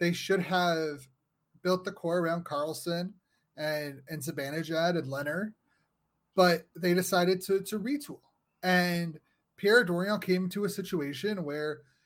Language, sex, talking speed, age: English, male, 135 wpm, 30-49